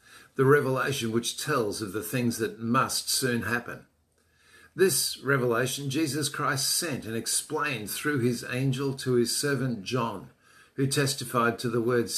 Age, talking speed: 50-69, 150 wpm